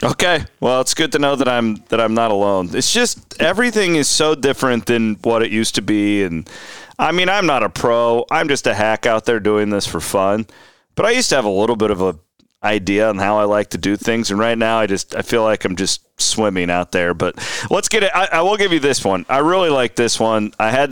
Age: 30-49